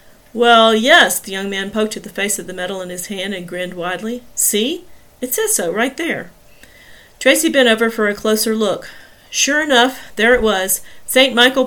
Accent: American